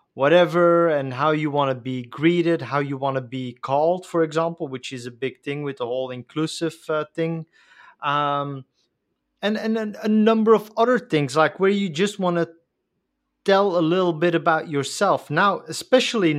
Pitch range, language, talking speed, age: 140-180 Hz, English, 185 wpm, 30-49